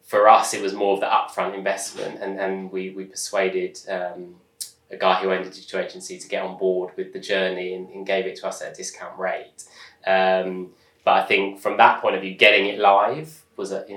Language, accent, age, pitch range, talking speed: English, British, 20-39, 95-100 Hz, 230 wpm